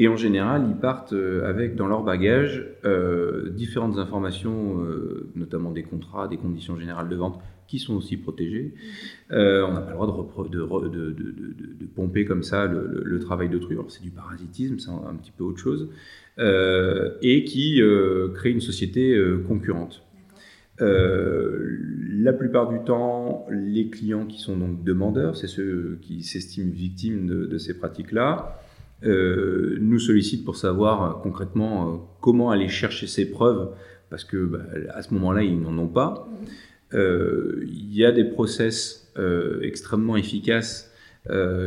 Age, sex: 30-49, male